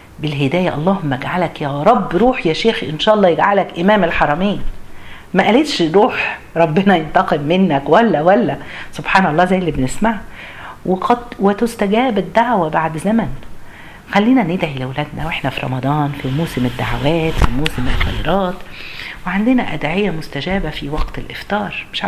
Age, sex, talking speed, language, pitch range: 50-69, female, 140 wpm, Arabic, 155-210 Hz